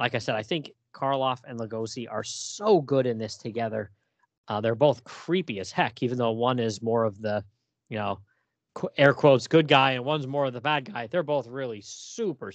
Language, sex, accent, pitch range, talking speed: English, male, American, 110-150 Hz, 210 wpm